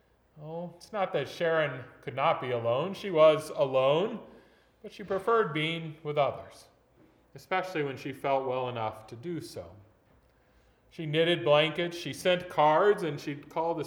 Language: English